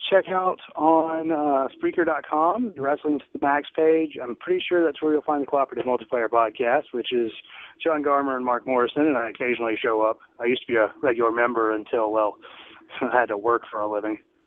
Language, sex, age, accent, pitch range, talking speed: English, male, 30-49, American, 125-165 Hz, 205 wpm